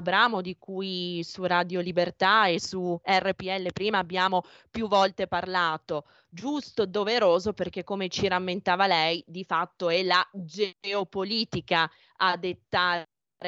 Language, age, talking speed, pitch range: Italian, 20-39, 120 wpm, 175-205 Hz